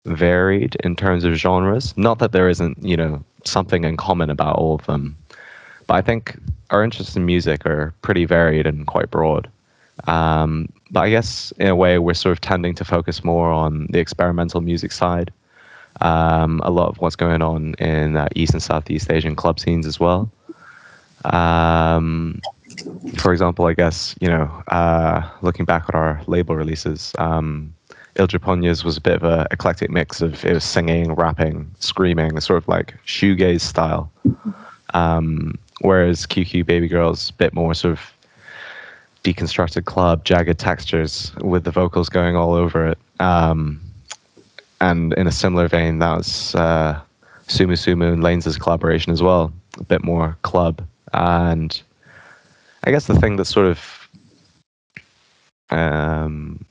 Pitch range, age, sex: 80-90 Hz, 20-39, male